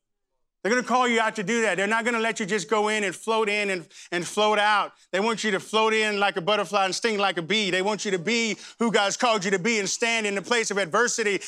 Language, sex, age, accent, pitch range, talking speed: English, male, 30-49, American, 210-275 Hz, 290 wpm